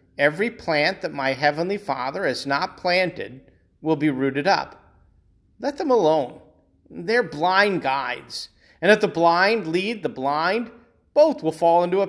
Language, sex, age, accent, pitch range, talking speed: English, male, 40-59, American, 135-210 Hz, 155 wpm